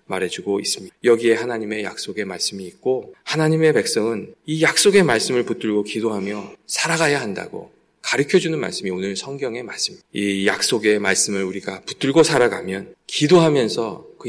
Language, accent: Korean, native